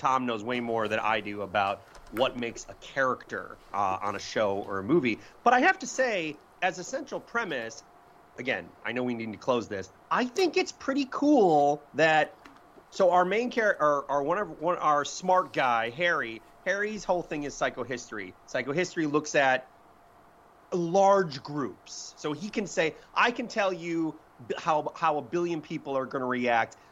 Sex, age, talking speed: male, 30-49, 175 wpm